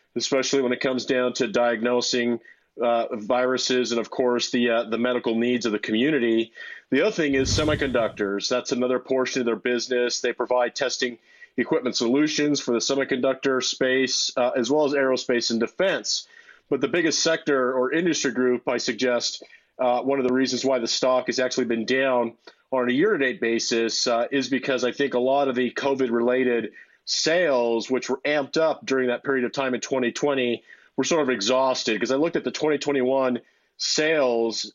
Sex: male